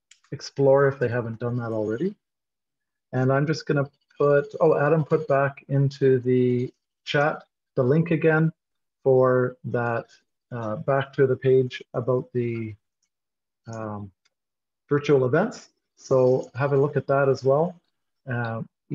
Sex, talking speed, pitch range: male, 135 wpm, 120-145 Hz